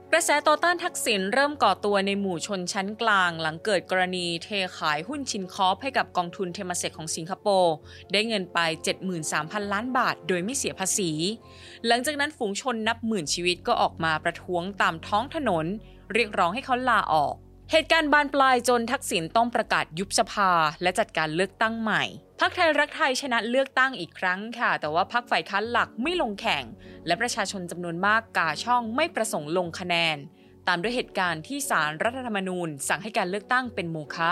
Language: English